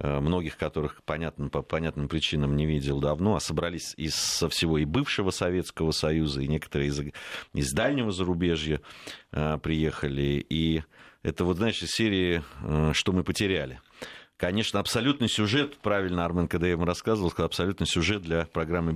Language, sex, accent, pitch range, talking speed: Russian, male, native, 75-95 Hz, 160 wpm